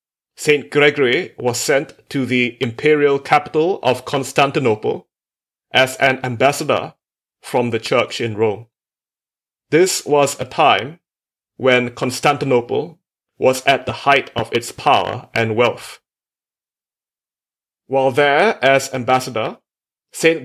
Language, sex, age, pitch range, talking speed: English, male, 30-49, 120-145 Hz, 110 wpm